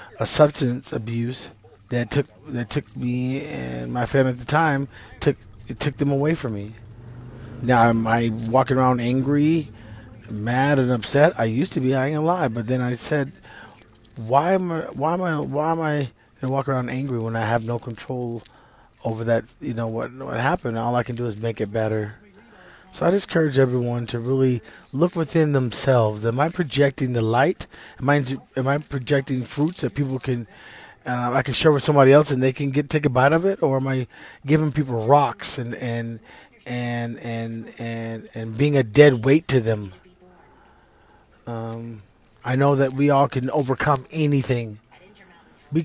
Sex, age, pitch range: male, 30-49, 115-140 Hz